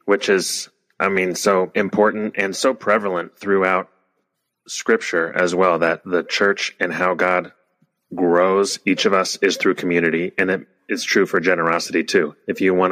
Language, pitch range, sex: English, 85-100 Hz, male